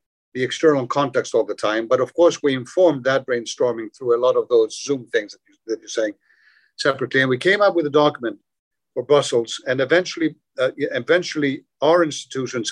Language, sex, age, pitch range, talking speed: English, male, 50-69, 120-170 Hz, 195 wpm